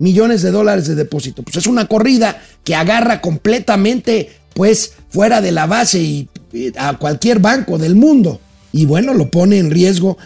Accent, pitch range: Mexican, 155-210 Hz